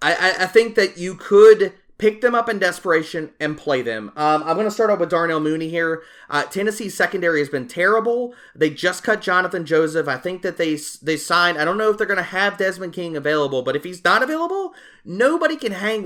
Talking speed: 225 wpm